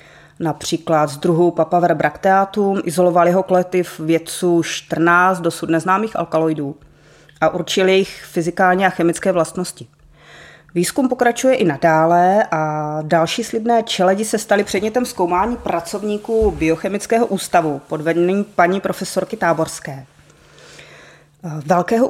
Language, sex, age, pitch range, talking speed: Czech, female, 30-49, 165-200 Hz, 115 wpm